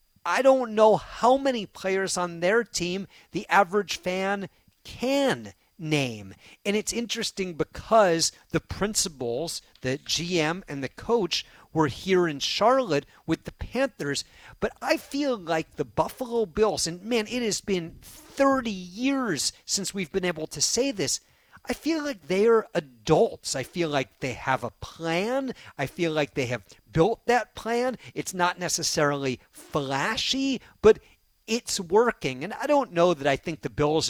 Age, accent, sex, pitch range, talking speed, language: 50-69, American, male, 145-215 Hz, 160 wpm, English